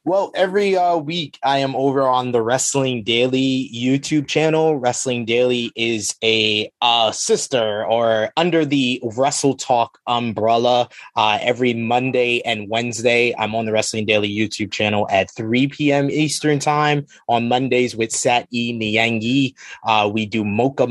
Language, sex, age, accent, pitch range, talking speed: English, male, 20-39, American, 110-125 Hz, 145 wpm